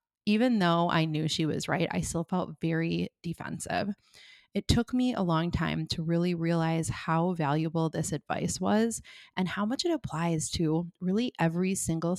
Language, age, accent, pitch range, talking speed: English, 20-39, American, 155-195 Hz, 170 wpm